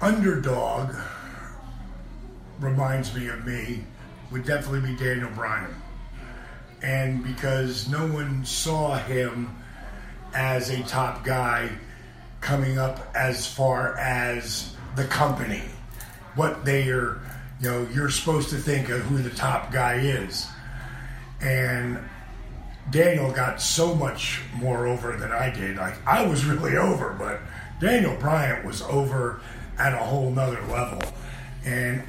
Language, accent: English, American